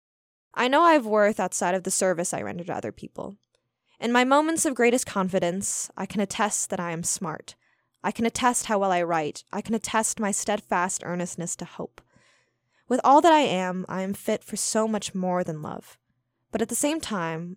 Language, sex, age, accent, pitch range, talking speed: English, female, 10-29, American, 180-230 Hz, 210 wpm